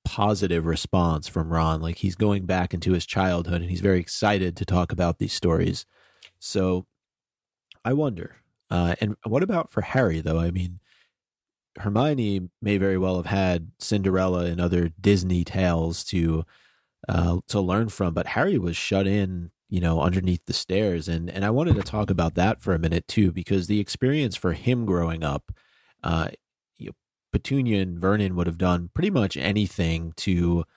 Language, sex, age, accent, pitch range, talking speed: English, male, 30-49, American, 85-100 Hz, 170 wpm